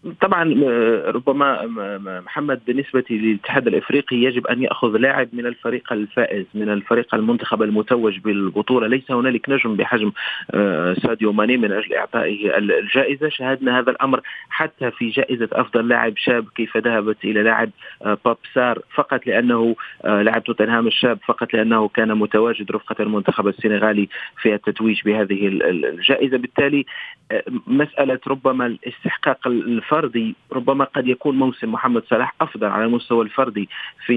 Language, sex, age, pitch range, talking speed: Arabic, male, 40-59, 110-130 Hz, 130 wpm